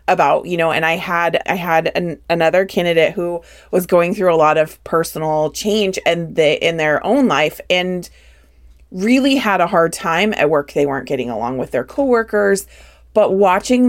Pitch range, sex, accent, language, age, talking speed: 160-205 Hz, female, American, English, 30-49, 180 wpm